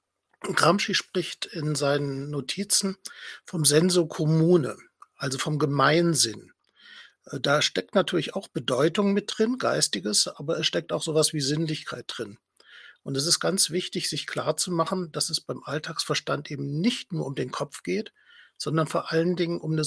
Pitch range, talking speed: 150-195 Hz, 155 wpm